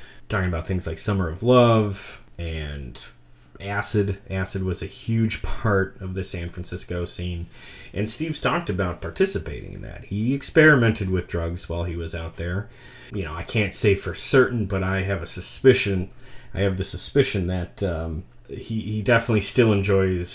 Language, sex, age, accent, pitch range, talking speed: English, male, 30-49, American, 85-115 Hz, 170 wpm